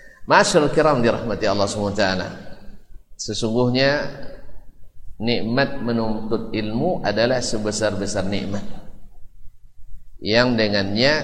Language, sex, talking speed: Indonesian, male, 75 wpm